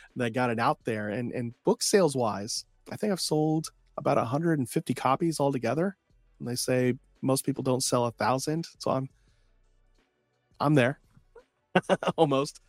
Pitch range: 110-140 Hz